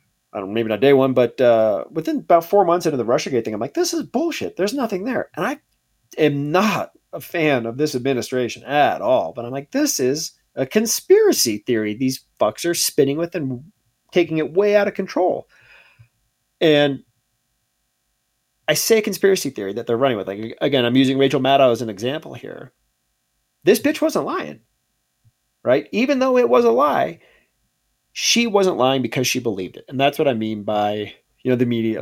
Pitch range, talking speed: 115-165 Hz, 195 wpm